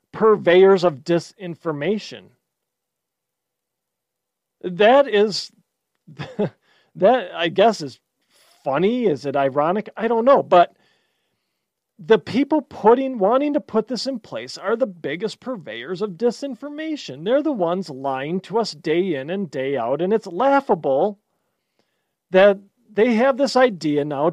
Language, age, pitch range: English, 40-59, 175-230 Hz